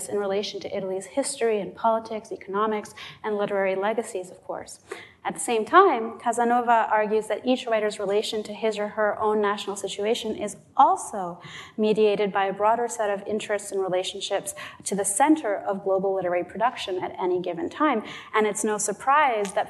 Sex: female